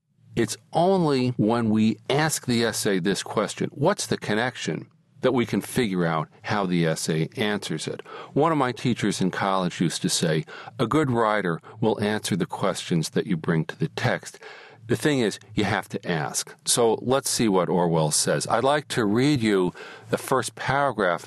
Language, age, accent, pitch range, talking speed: English, 50-69, American, 90-135 Hz, 185 wpm